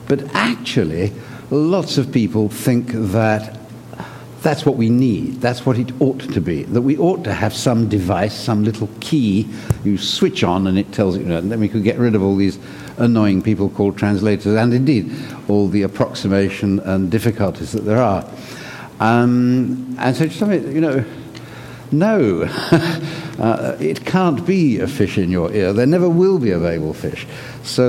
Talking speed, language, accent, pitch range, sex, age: 170 wpm, English, British, 100-130 Hz, male, 60-79